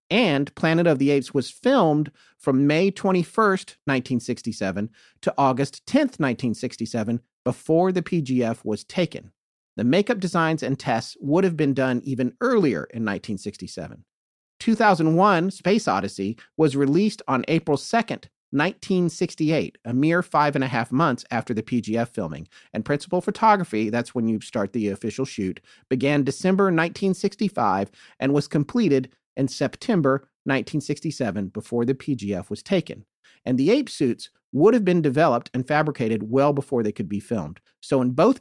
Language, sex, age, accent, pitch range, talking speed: English, male, 40-59, American, 125-175 Hz, 150 wpm